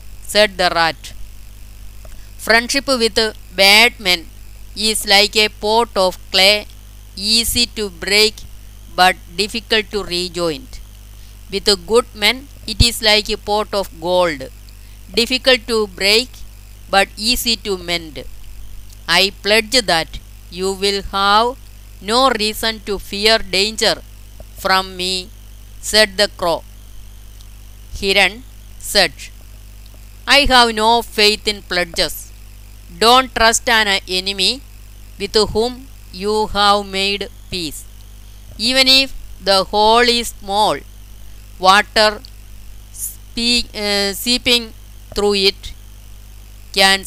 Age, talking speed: 20-39, 110 wpm